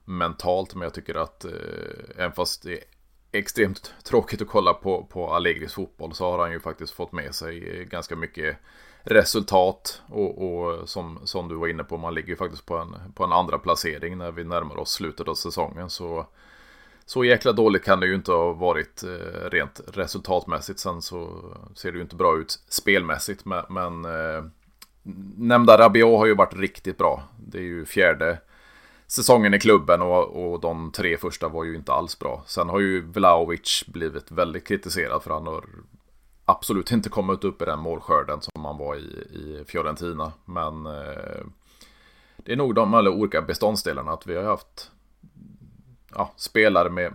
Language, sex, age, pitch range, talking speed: Swedish, male, 30-49, 80-95 Hz, 180 wpm